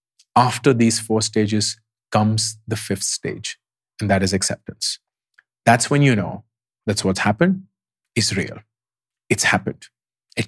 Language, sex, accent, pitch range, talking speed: English, male, Indian, 100-120 Hz, 135 wpm